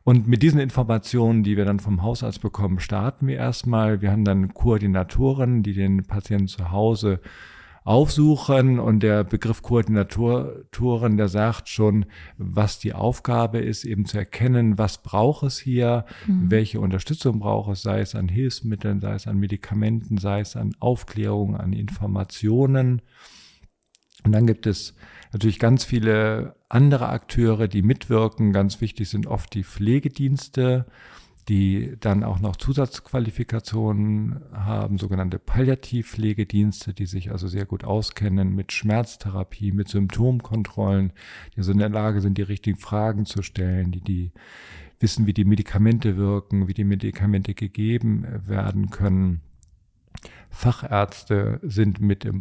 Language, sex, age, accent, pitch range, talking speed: German, male, 50-69, German, 100-115 Hz, 140 wpm